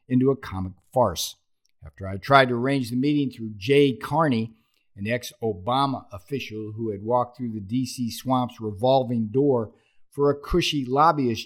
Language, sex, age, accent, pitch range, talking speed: English, male, 50-69, American, 100-145 Hz, 155 wpm